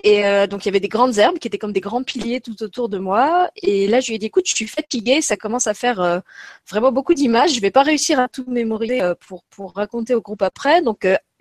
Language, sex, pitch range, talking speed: French, female, 210-280 Hz, 285 wpm